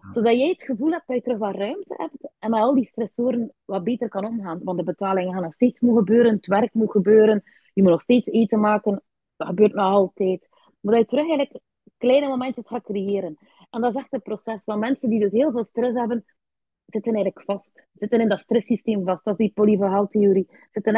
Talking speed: 225 wpm